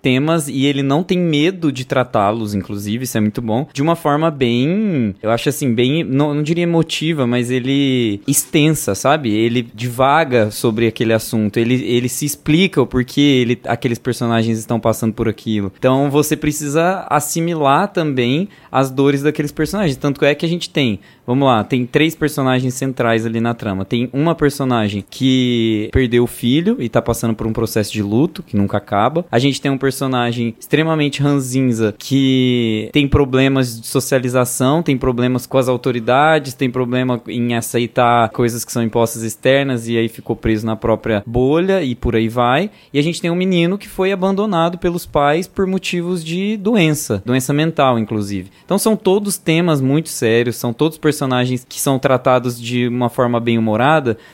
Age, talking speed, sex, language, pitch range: 20-39, 180 wpm, male, Portuguese, 120-150 Hz